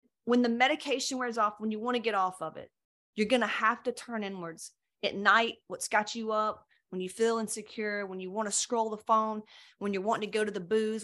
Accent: American